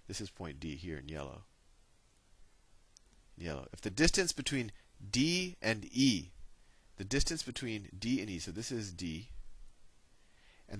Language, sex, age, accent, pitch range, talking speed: English, male, 30-49, American, 80-115 Hz, 145 wpm